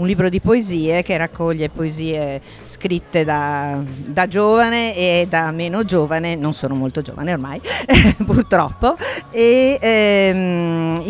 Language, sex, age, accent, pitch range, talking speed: Italian, female, 50-69, native, 170-215 Hz, 125 wpm